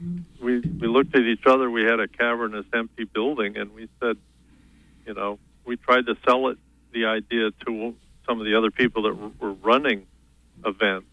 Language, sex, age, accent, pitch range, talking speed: English, male, 50-69, American, 70-115 Hz, 185 wpm